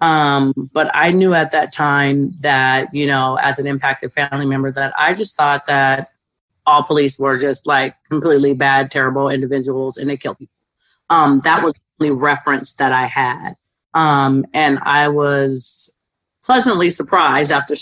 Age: 30-49